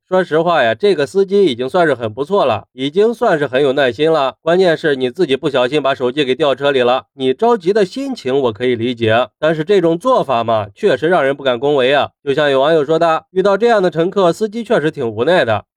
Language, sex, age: Chinese, male, 30-49